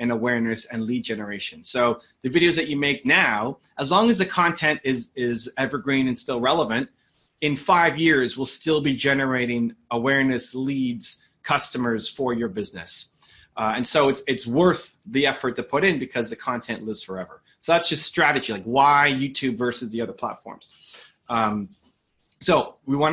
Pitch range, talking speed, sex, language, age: 120-155 Hz, 175 wpm, male, English, 30-49